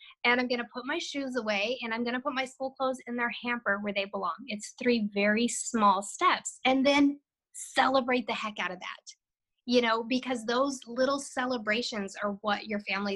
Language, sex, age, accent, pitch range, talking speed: English, female, 20-39, American, 210-260 Hz, 205 wpm